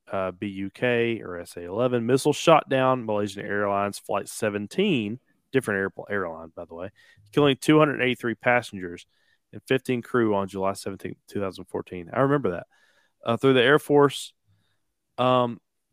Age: 30-49